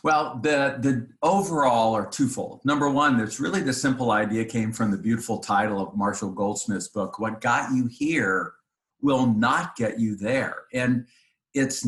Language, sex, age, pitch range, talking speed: English, male, 50-69, 105-130 Hz, 165 wpm